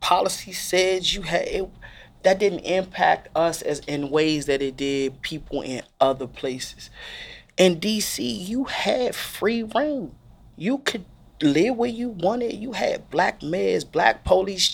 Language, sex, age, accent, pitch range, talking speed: English, male, 30-49, American, 130-185 Hz, 150 wpm